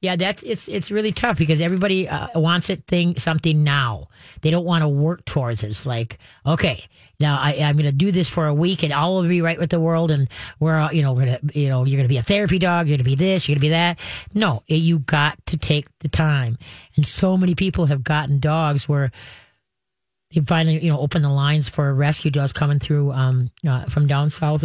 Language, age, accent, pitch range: English, 40-59, American, 140-165 Hz